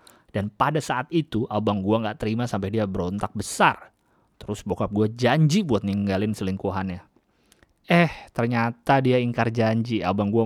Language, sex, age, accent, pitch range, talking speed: Indonesian, male, 30-49, native, 110-155 Hz, 150 wpm